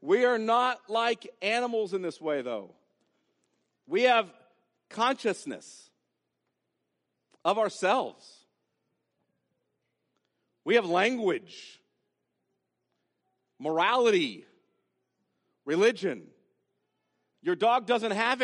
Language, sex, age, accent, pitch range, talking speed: English, male, 50-69, American, 150-215 Hz, 75 wpm